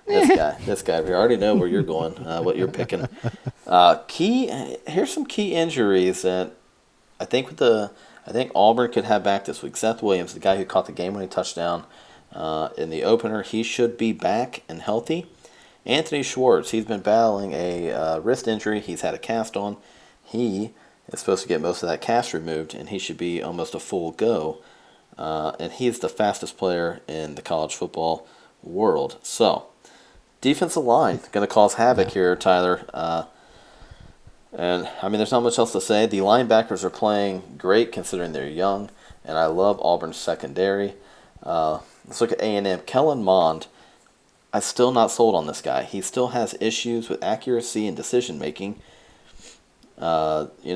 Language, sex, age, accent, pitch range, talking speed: English, male, 40-59, American, 90-120 Hz, 180 wpm